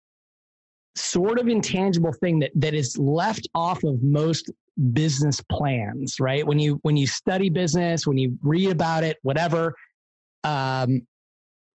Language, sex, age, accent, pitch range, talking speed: English, male, 30-49, American, 135-170 Hz, 140 wpm